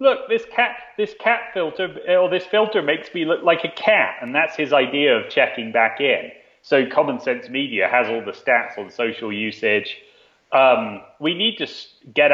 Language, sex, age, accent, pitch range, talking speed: English, male, 30-49, British, 115-155 Hz, 190 wpm